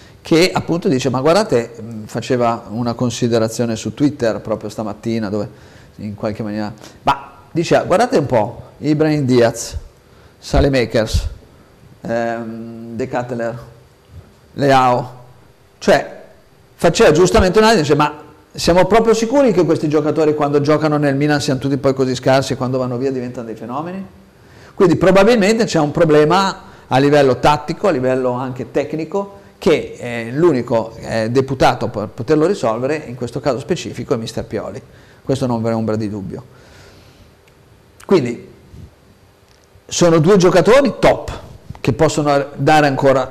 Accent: native